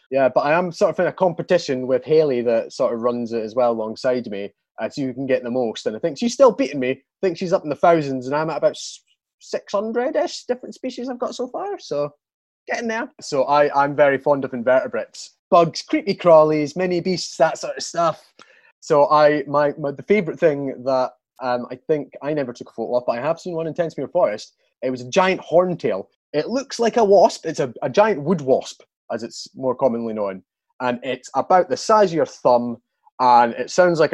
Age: 20-39